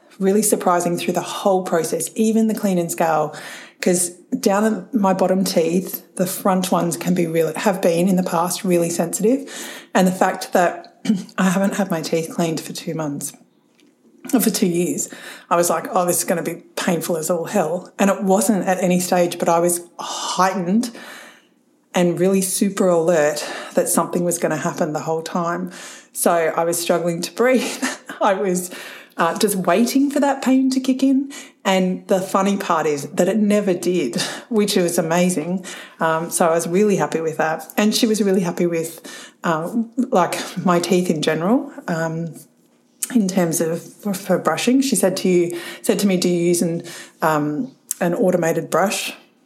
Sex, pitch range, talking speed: female, 170-220 Hz, 185 wpm